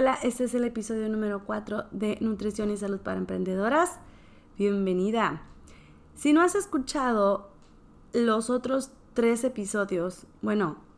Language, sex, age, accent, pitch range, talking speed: Spanish, female, 20-39, Mexican, 200-255 Hz, 125 wpm